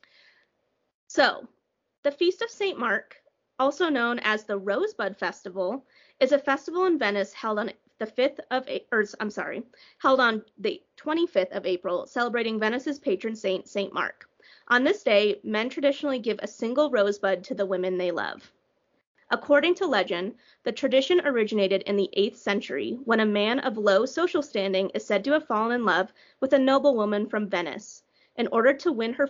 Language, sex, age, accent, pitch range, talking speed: English, female, 30-49, American, 205-280 Hz, 175 wpm